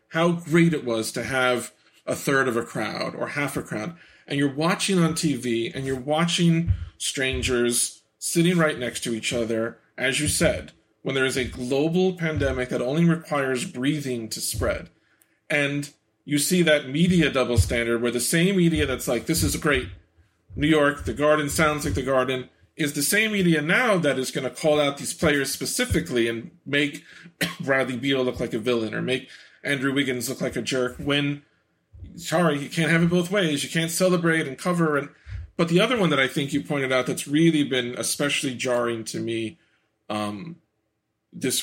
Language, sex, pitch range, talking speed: English, male, 120-160 Hz, 190 wpm